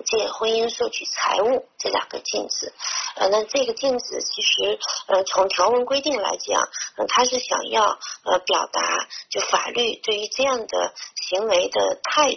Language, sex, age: Chinese, female, 30-49